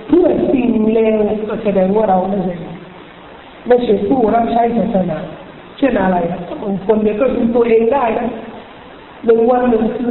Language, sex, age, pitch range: Thai, male, 50-69, 205-255 Hz